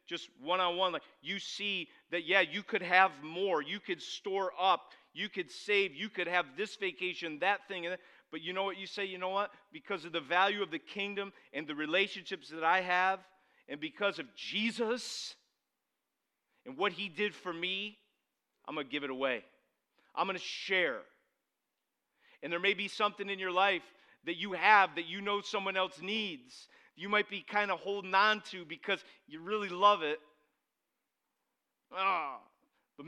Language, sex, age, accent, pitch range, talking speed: English, male, 40-59, American, 170-205 Hz, 180 wpm